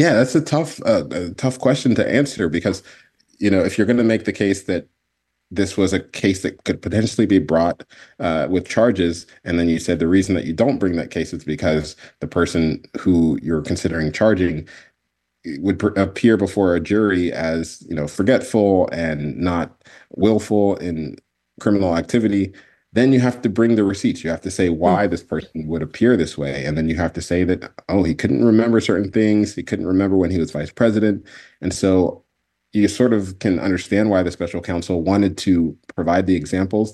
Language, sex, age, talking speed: English, male, 30-49, 200 wpm